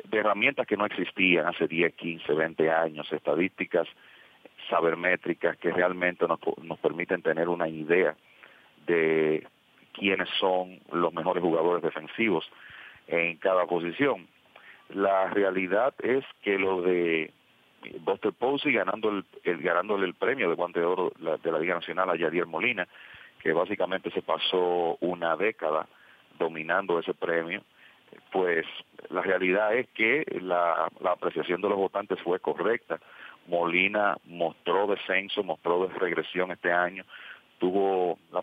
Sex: male